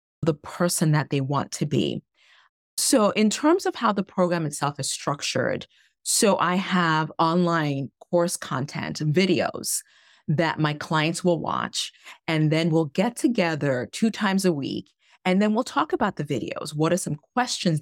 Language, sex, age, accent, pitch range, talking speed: English, female, 30-49, American, 155-210 Hz, 165 wpm